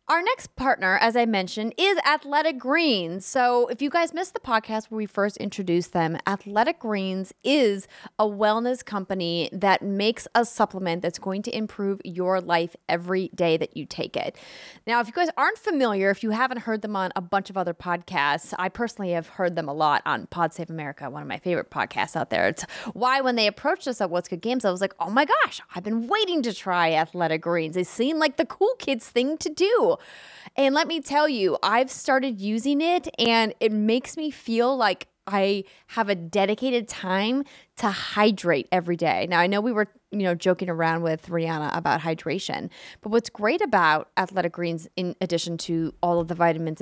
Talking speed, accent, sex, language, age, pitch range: 205 wpm, American, female, English, 20-39, 180-270 Hz